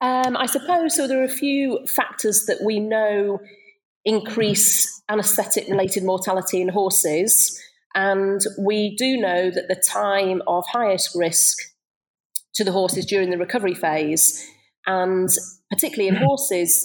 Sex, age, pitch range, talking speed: female, 30-49, 180-210 Hz, 135 wpm